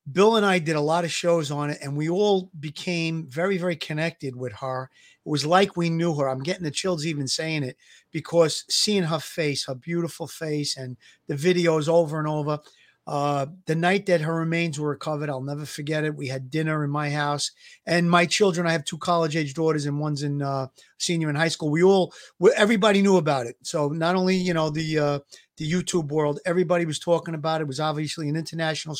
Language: English